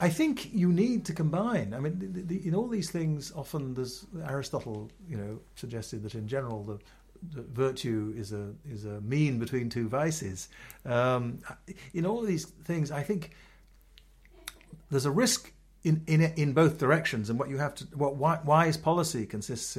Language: English